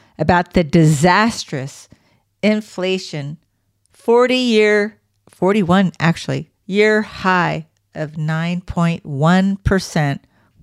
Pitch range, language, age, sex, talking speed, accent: 155-220 Hz, English, 50-69, female, 70 wpm, American